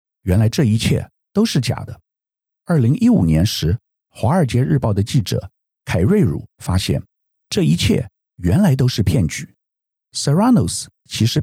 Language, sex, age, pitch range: Chinese, male, 50-69, 100-150 Hz